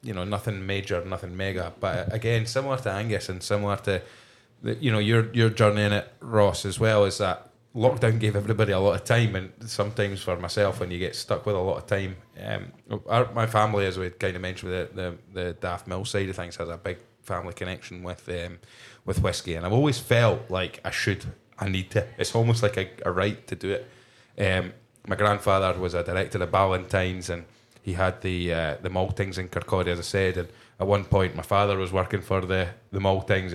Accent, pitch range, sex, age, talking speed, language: British, 95-115 Hz, male, 20-39, 220 wpm, English